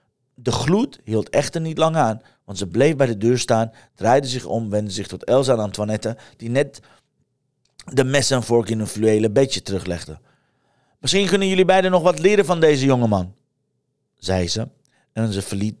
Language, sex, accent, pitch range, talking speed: Dutch, male, Dutch, 105-140 Hz, 185 wpm